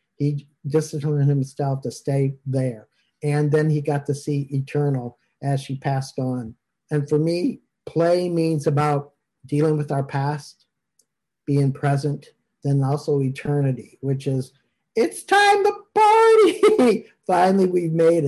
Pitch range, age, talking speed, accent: 140-160 Hz, 50-69, 135 wpm, American